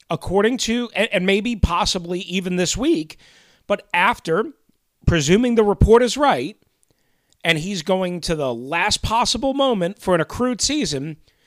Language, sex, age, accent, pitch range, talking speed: English, male, 40-59, American, 180-235 Hz, 140 wpm